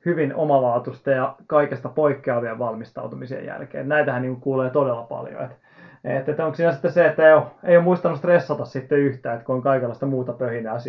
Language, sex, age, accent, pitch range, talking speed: Finnish, male, 30-49, native, 130-150 Hz, 165 wpm